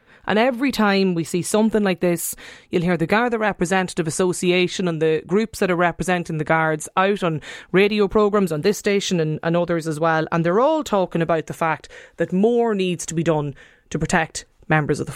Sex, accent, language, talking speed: female, Irish, English, 205 wpm